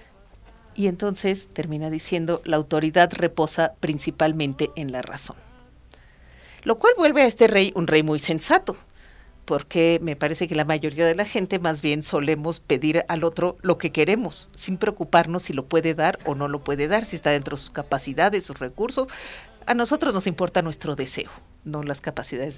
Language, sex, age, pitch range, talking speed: Spanish, female, 40-59, 155-215 Hz, 180 wpm